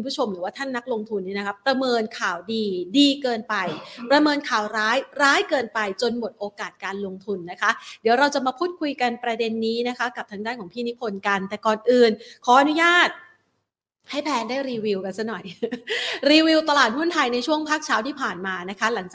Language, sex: Thai, female